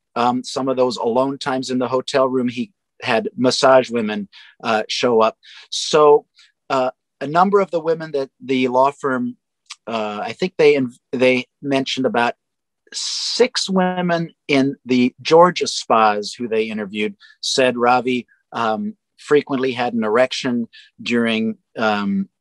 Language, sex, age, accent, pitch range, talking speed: English, male, 50-69, American, 120-145 Hz, 140 wpm